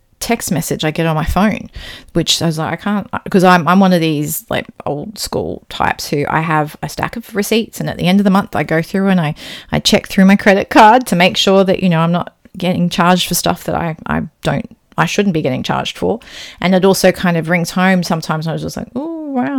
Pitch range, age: 165-205 Hz, 30-49